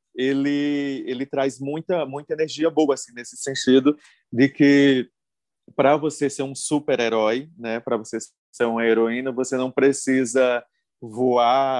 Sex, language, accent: male, Portuguese, Brazilian